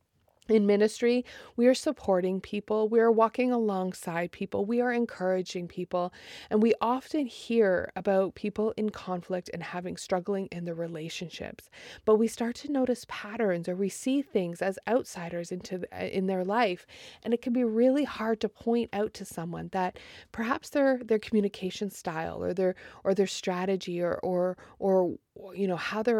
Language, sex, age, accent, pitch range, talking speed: English, female, 30-49, American, 185-235 Hz, 170 wpm